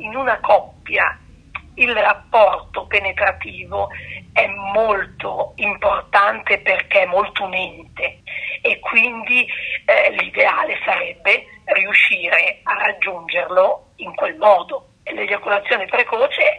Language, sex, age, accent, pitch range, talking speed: Italian, female, 50-69, native, 190-280 Hz, 95 wpm